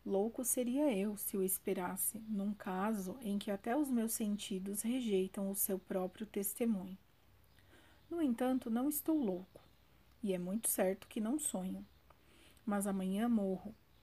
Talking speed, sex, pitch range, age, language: 145 wpm, female, 195-230 Hz, 40-59, Portuguese